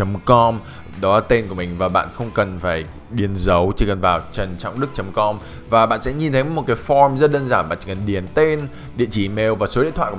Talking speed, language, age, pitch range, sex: 240 wpm, Vietnamese, 20-39, 100-140 Hz, male